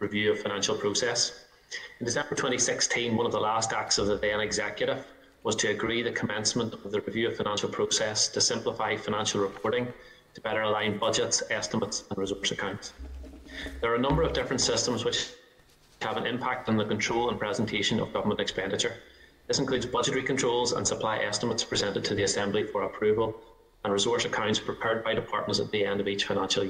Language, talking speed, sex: English, 185 wpm, male